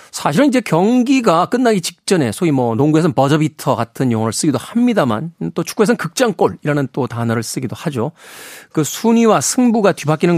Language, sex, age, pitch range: Korean, male, 40-59, 130-185 Hz